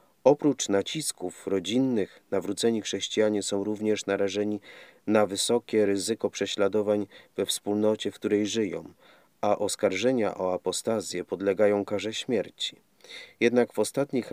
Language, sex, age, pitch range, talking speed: Polish, male, 40-59, 100-115 Hz, 115 wpm